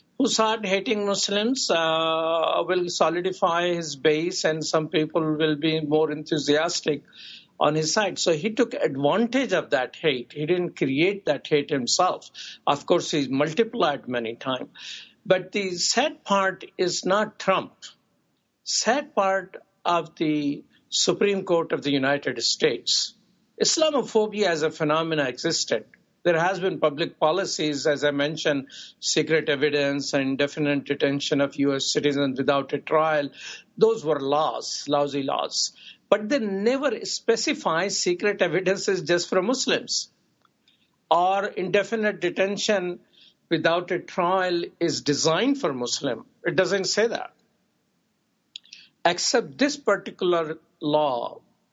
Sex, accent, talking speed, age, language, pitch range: male, Indian, 130 wpm, 60-79, English, 150-200 Hz